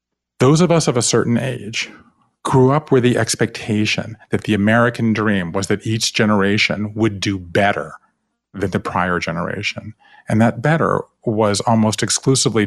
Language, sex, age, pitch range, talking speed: English, male, 50-69, 95-125 Hz, 155 wpm